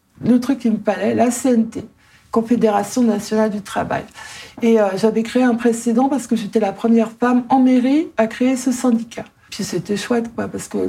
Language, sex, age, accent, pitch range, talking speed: French, female, 60-79, French, 215-245 Hz, 195 wpm